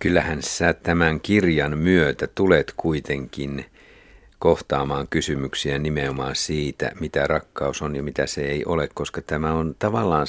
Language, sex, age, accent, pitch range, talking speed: Finnish, male, 50-69, native, 75-85 Hz, 135 wpm